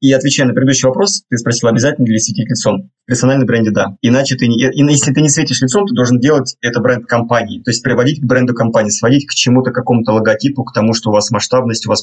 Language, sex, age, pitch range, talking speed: Russian, male, 20-39, 115-140 Hz, 240 wpm